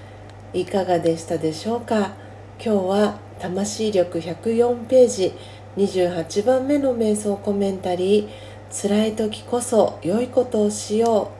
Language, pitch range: Japanese, 175-210 Hz